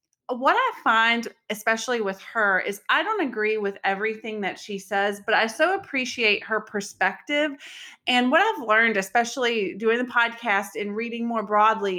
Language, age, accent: English, 30-49, American